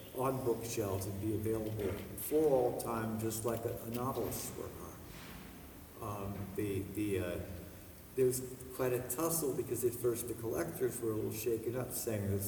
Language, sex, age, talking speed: English, male, 50-69, 175 wpm